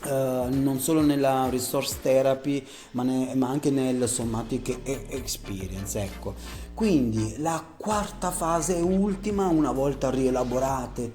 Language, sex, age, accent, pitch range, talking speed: Italian, male, 30-49, native, 115-150 Hz, 100 wpm